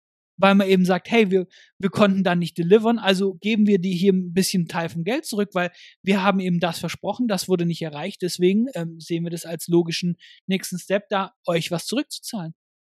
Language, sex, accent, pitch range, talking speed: German, male, German, 175-220 Hz, 210 wpm